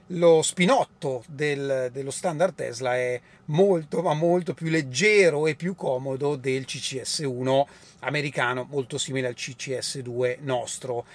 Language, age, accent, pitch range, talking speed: Italian, 30-49, native, 145-210 Hz, 120 wpm